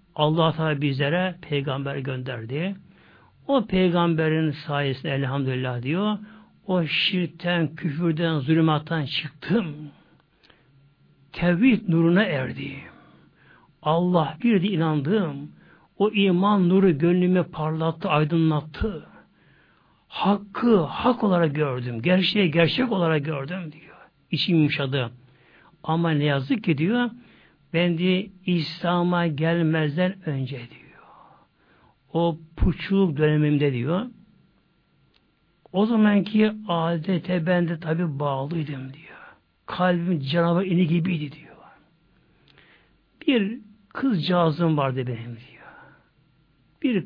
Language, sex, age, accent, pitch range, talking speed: Turkish, male, 60-79, native, 150-190 Hz, 90 wpm